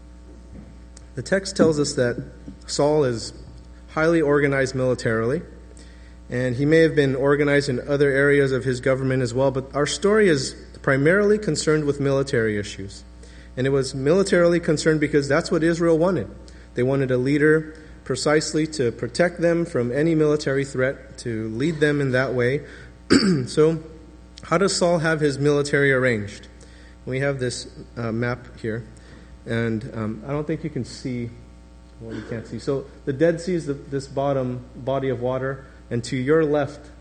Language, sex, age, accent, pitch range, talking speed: English, male, 30-49, American, 115-150 Hz, 165 wpm